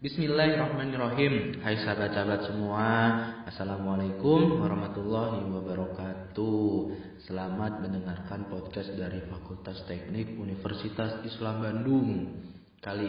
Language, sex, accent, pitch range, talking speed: Indonesian, male, native, 100-120 Hz, 80 wpm